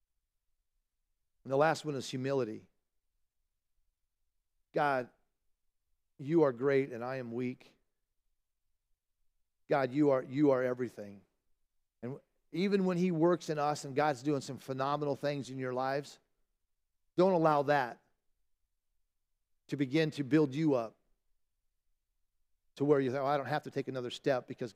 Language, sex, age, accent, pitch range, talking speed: English, male, 40-59, American, 115-165 Hz, 140 wpm